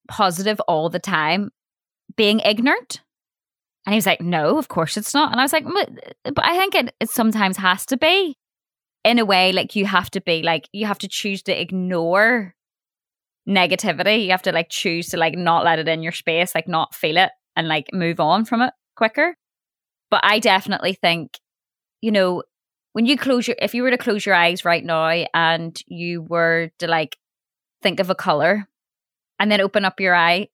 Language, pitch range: English, 170-210 Hz